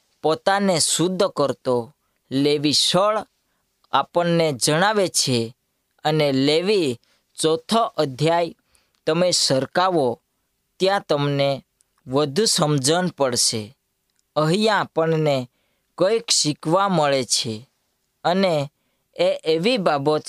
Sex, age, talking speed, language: female, 20-39, 65 wpm, Gujarati